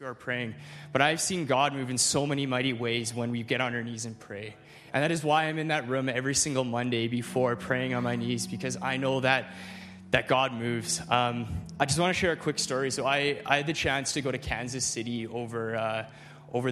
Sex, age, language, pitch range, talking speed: male, 20-39, English, 120-150 Hz, 235 wpm